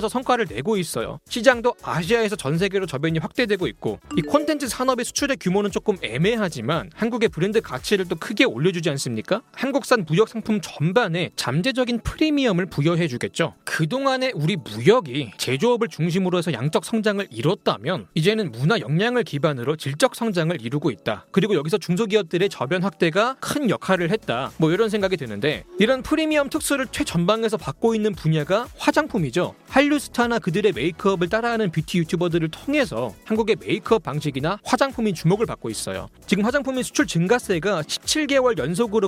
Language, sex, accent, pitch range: Korean, male, native, 170-240 Hz